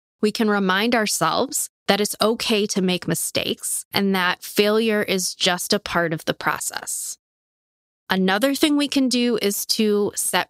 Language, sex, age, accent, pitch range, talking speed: English, female, 20-39, American, 180-230 Hz, 160 wpm